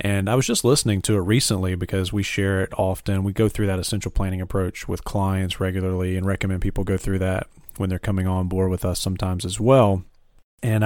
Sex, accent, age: male, American, 40-59